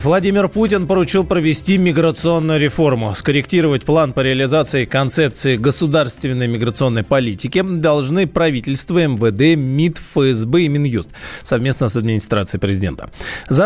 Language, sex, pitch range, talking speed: Russian, male, 120-165 Hz, 115 wpm